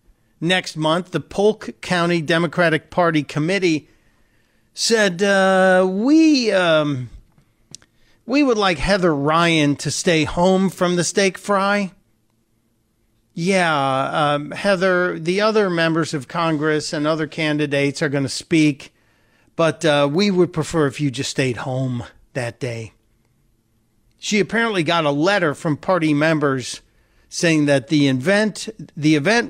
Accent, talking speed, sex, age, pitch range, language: American, 130 wpm, male, 50-69, 130-190 Hz, English